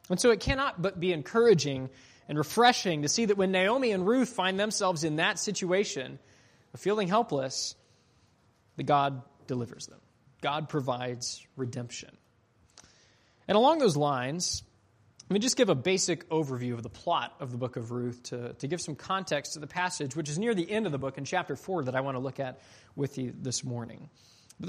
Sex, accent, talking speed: male, American, 195 wpm